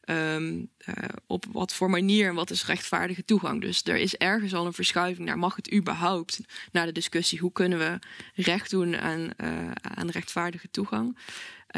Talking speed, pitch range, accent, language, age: 180 wpm, 170-205 Hz, Dutch, Dutch, 20-39